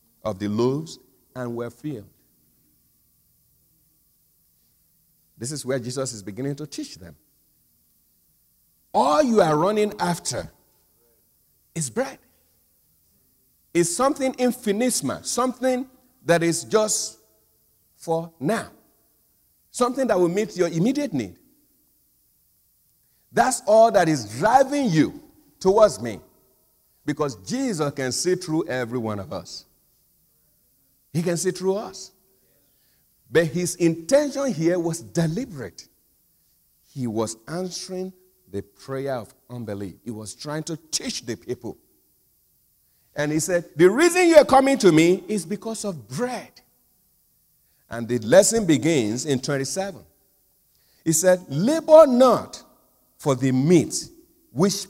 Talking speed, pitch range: 120 wpm, 125-205 Hz